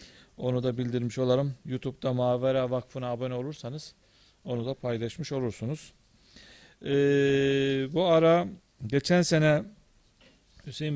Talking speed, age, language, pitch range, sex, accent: 105 wpm, 40-59, Turkish, 120-140 Hz, male, native